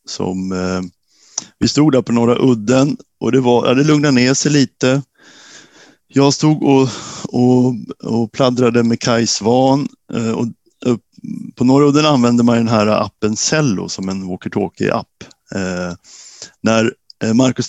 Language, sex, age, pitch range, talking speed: Swedish, male, 60-79, 110-135 Hz, 145 wpm